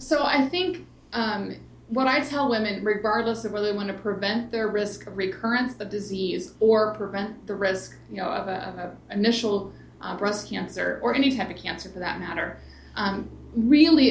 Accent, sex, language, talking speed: American, female, English, 190 wpm